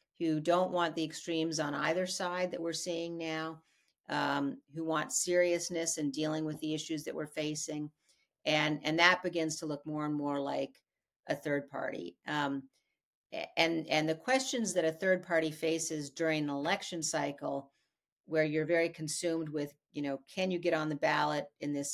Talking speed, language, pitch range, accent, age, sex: 180 wpm, English, 145-170 Hz, American, 50-69, female